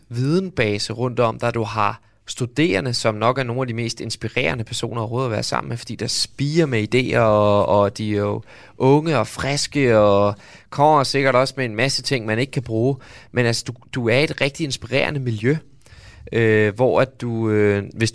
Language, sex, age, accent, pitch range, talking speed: Danish, male, 20-39, native, 105-130 Hz, 200 wpm